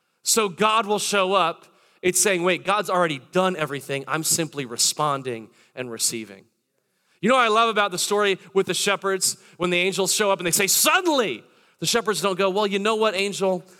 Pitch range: 140-205 Hz